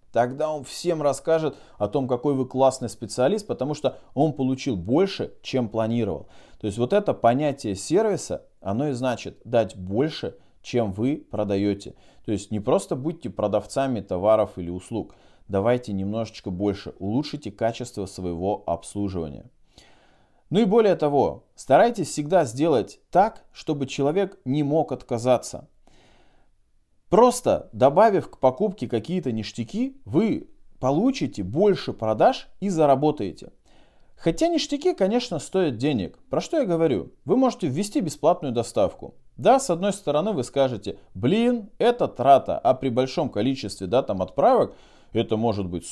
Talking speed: 135 wpm